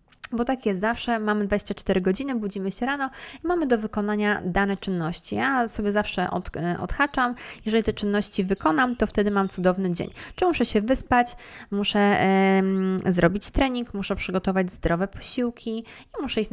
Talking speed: 155 wpm